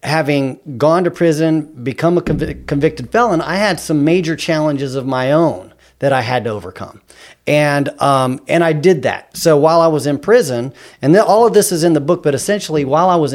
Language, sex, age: English, male, 40-59